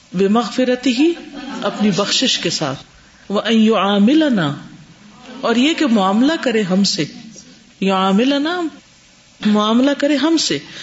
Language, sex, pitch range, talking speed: Urdu, female, 180-245 Hz, 105 wpm